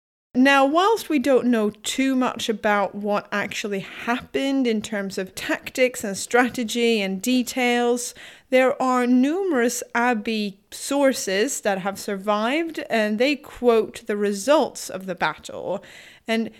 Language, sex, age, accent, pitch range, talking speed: English, female, 30-49, British, 195-245 Hz, 130 wpm